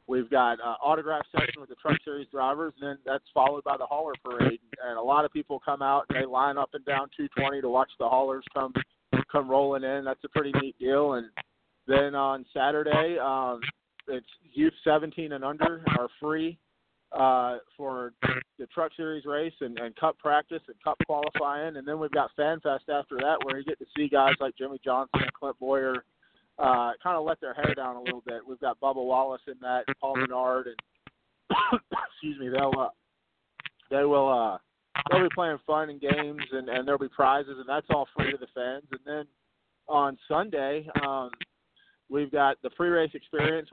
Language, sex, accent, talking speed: English, male, American, 200 wpm